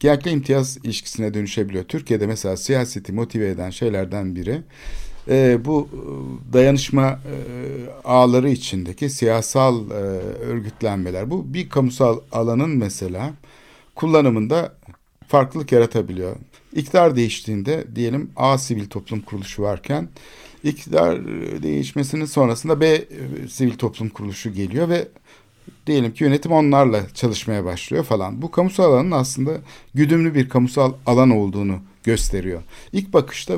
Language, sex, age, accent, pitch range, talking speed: Turkish, male, 60-79, native, 105-140 Hz, 110 wpm